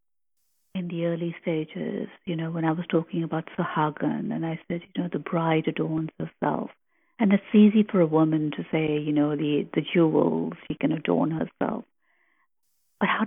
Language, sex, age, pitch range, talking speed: English, female, 50-69, 160-195 Hz, 180 wpm